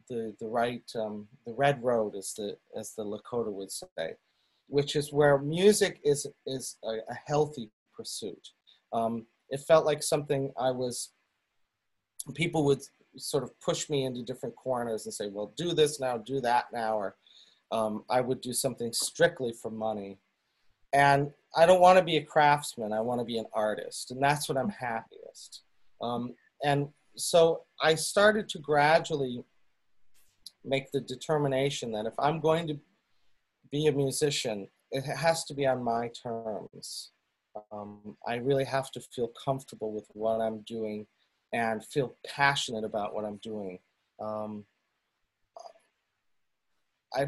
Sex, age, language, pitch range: male, 40-59, English, 115-150 Hz